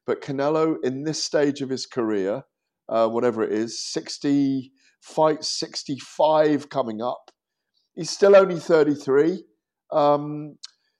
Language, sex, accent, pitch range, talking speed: English, male, British, 100-150 Hz, 120 wpm